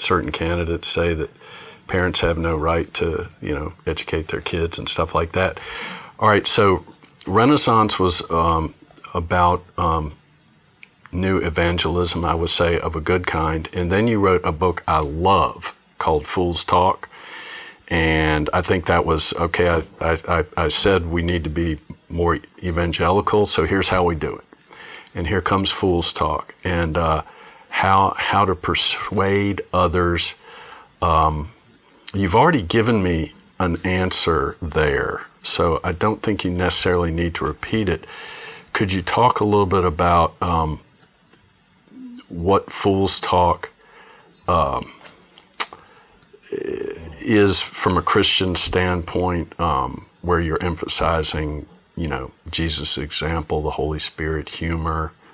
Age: 40-59